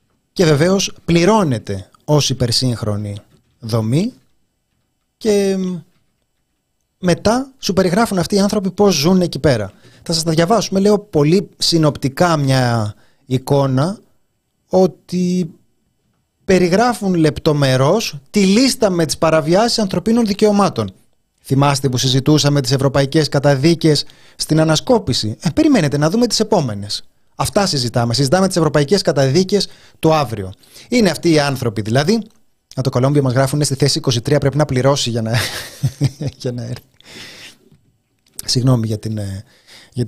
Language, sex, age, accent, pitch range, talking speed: Greek, male, 30-49, native, 130-190 Hz, 125 wpm